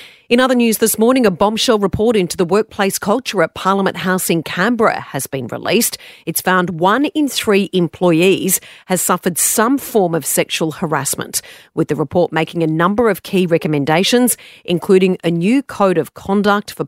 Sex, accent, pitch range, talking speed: female, Australian, 155-195 Hz, 175 wpm